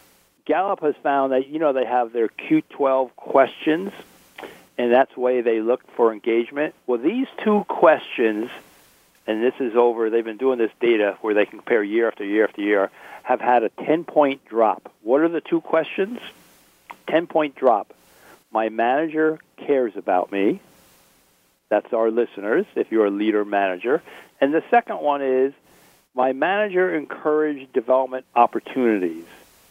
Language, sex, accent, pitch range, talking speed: English, male, American, 115-155 Hz, 150 wpm